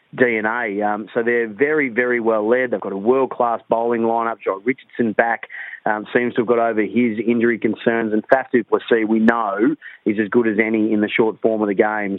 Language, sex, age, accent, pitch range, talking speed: English, male, 30-49, Australian, 110-125 Hz, 210 wpm